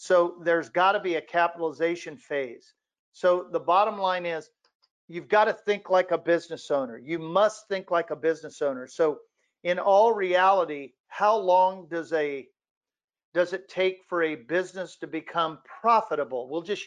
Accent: American